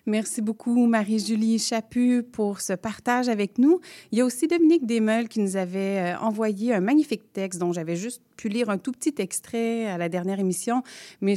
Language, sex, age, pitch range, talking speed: French, female, 30-49, 180-215 Hz, 190 wpm